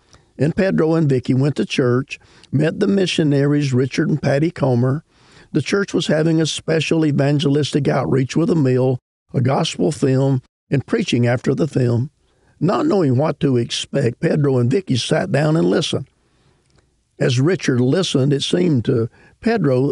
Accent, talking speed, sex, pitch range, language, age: American, 155 wpm, male, 125-160 Hz, English, 50-69